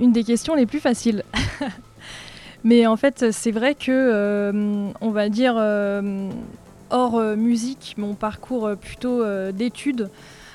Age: 20-39